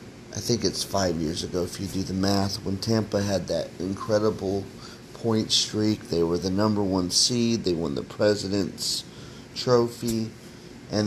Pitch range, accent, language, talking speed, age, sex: 95-110 Hz, American, English, 165 wpm, 30-49, male